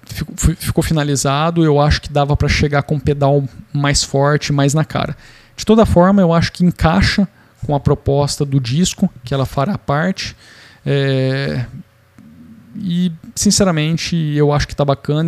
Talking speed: 155 wpm